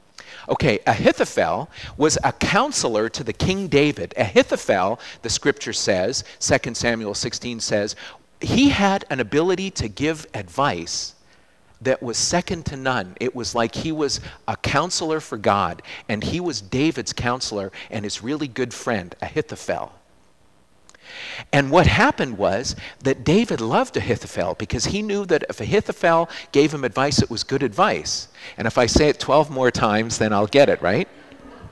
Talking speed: 155 wpm